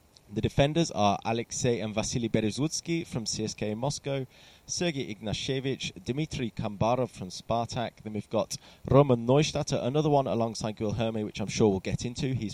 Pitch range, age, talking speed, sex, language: 110-140 Hz, 20-39, 155 wpm, male, English